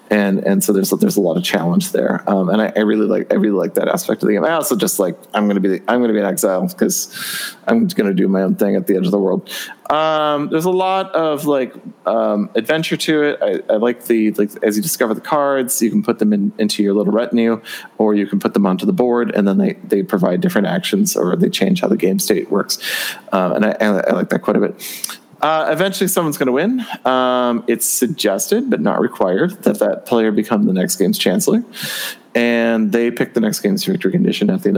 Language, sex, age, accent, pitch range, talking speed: English, male, 30-49, American, 110-155 Hz, 250 wpm